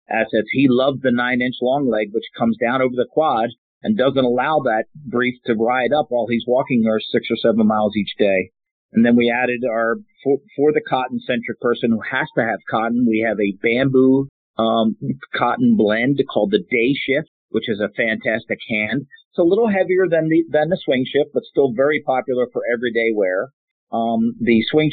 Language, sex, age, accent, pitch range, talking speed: English, male, 50-69, American, 120-140 Hz, 195 wpm